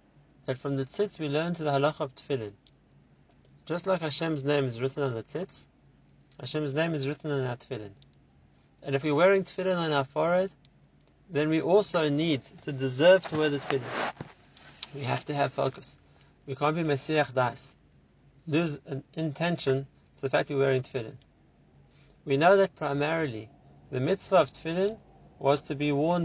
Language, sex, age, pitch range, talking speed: English, male, 30-49, 130-155 Hz, 175 wpm